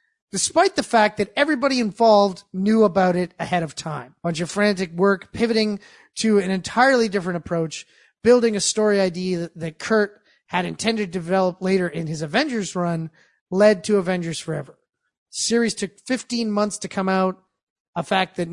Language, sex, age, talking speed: English, male, 30-49, 170 wpm